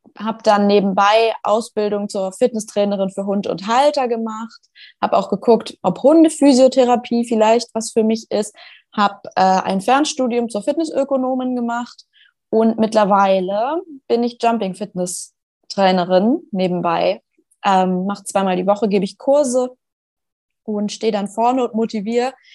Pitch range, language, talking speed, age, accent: 200-235 Hz, German, 130 wpm, 20-39, German